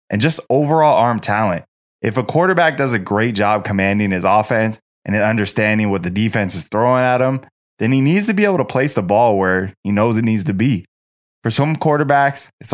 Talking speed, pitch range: 210 wpm, 100-125 Hz